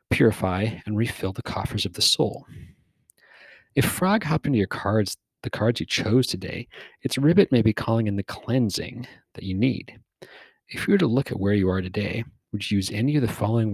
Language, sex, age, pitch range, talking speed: English, male, 40-59, 100-125 Hz, 205 wpm